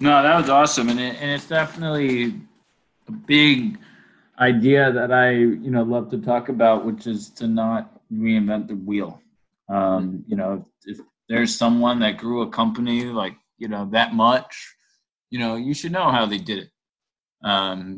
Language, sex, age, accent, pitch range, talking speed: English, male, 20-39, American, 110-140 Hz, 175 wpm